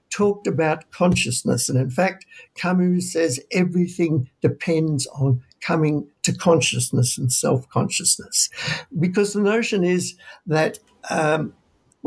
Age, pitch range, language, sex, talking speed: 60-79, 145-185 Hz, English, male, 110 wpm